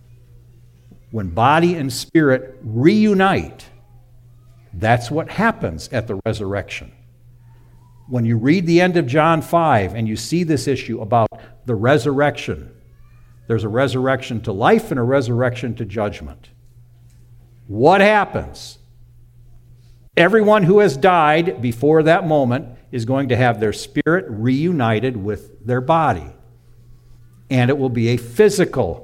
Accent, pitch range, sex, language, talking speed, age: American, 120-150 Hz, male, English, 130 wpm, 60-79